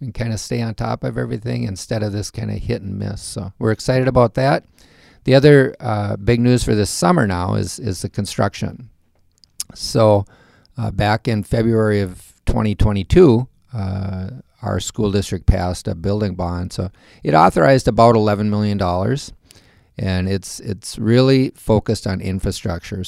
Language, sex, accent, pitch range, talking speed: English, male, American, 90-110 Hz, 160 wpm